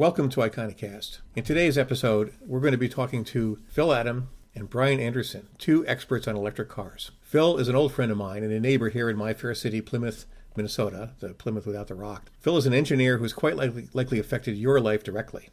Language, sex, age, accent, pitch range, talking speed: English, male, 50-69, American, 105-130 Hz, 215 wpm